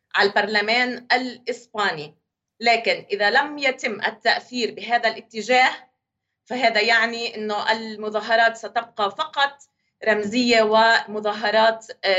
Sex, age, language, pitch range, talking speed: female, 30-49, Arabic, 210-250 Hz, 90 wpm